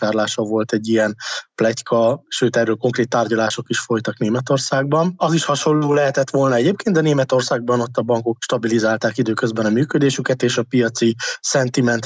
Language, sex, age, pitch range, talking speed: Hungarian, male, 20-39, 115-135 Hz, 155 wpm